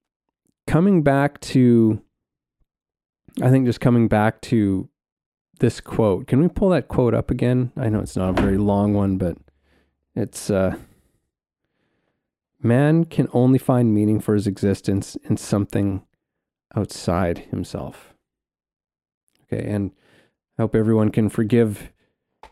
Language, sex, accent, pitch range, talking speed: English, male, American, 100-120 Hz, 130 wpm